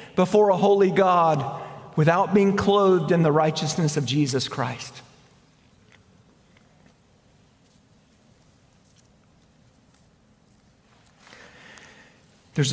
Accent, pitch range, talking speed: American, 155-205 Hz, 65 wpm